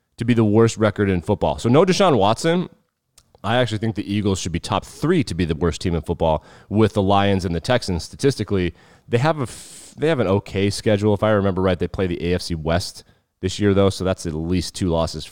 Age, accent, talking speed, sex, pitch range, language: 30-49, American, 240 wpm, male, 90-120 Hz, English